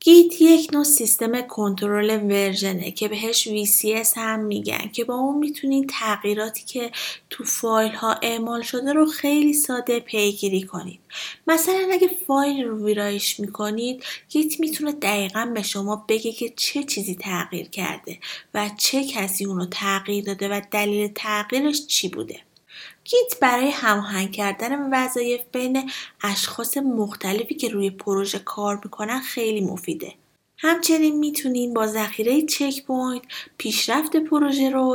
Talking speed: 135 wpm